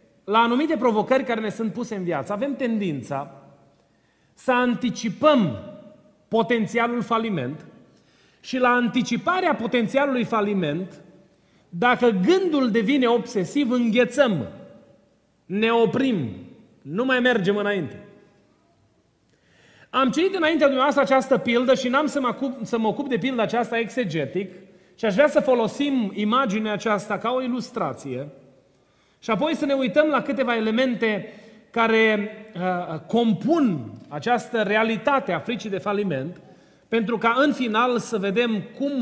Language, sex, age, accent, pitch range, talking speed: Romanian, male, 30-49, native, 185-245 Hz, 120 wpm